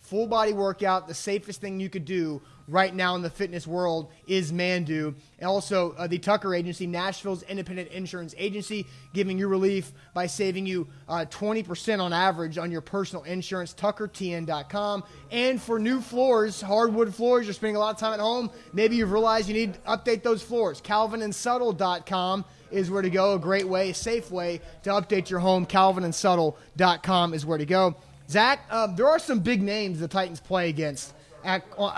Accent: American